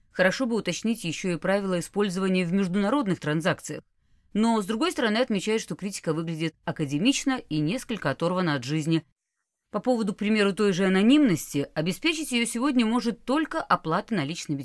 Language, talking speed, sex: Russian, 155 wpm, female